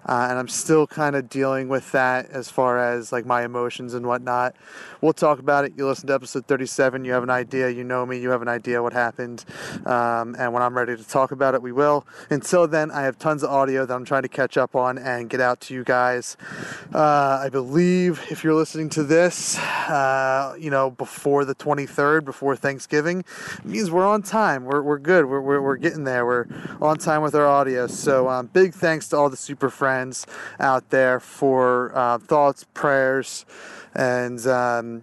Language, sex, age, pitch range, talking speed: English, male, 30-49, 125-140 Hz, 210 wpm